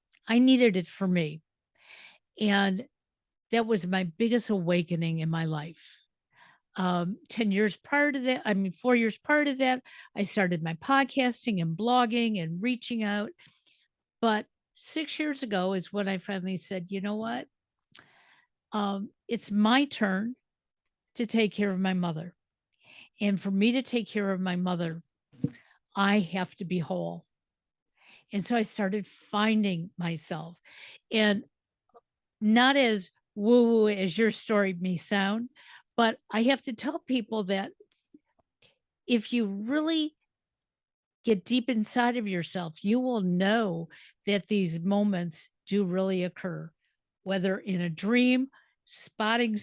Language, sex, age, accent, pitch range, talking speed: English, female, 50-69, American, 185-235 Hz, 140 wpm